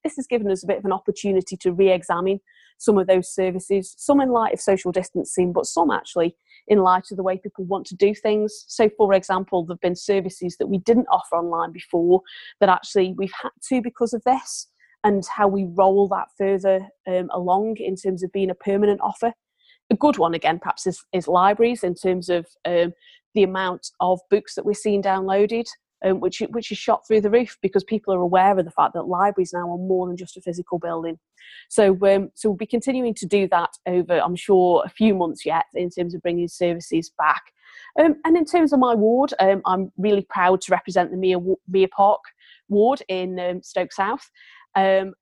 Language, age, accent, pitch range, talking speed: English, 30-49, British, 180-210 Hz, 210 wpm